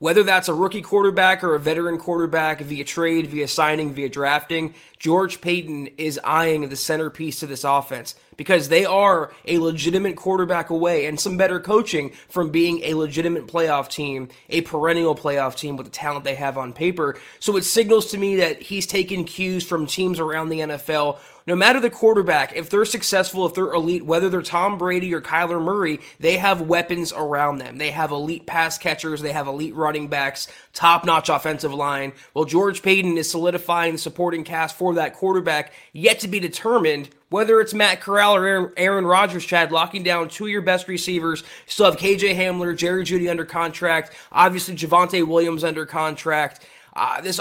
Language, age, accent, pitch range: English, 20-39, American, 155-185 Hz